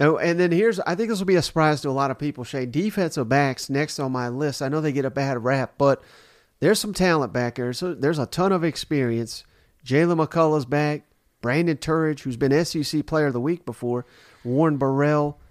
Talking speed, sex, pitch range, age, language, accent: 220 wpm, male, 130-155 Hz, 40-59, English, American